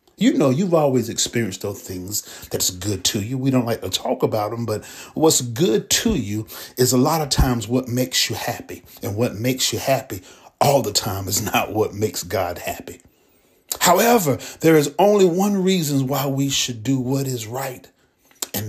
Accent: American